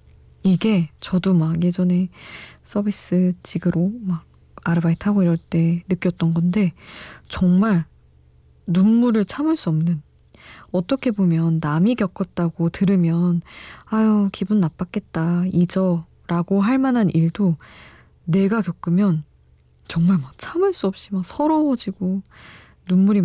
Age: 20-39